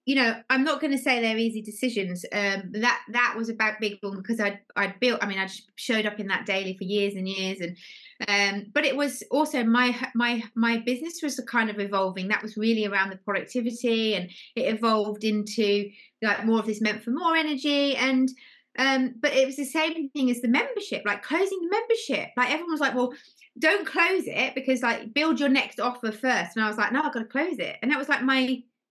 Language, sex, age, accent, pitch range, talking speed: English, female, 20-39, British, 215-270 Hz, 230 wpm